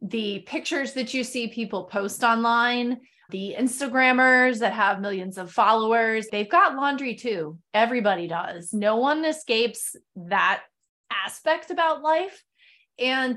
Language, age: English, 20-39